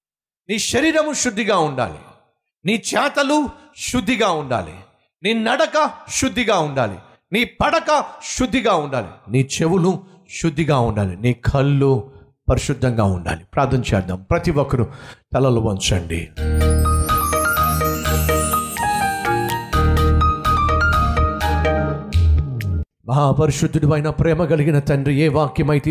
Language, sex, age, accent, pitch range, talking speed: Telugu, male, 50-69, native, 120-160 Hz, 85 wpm